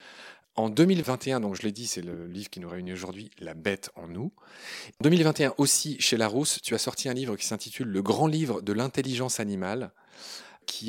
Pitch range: 95-130 Hz